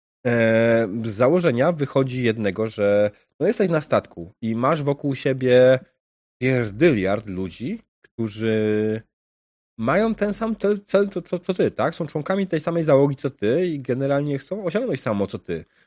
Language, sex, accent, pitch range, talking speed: Polish, male, native, 105-140 Hz, 150 wpm